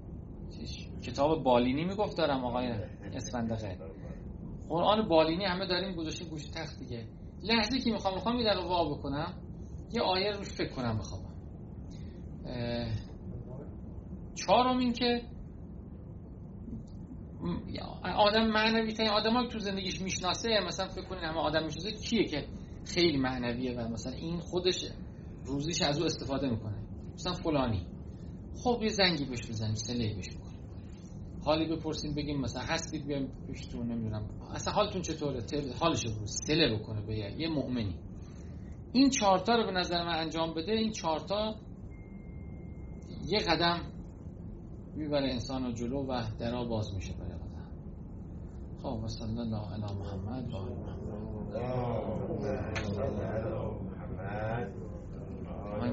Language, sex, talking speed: Persian, male, 115 wpm